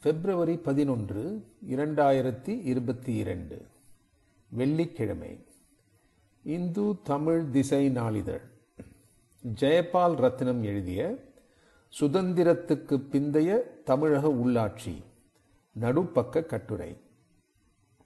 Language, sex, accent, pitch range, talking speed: Tamil, male, native, 115-150 Hz, 60 wpm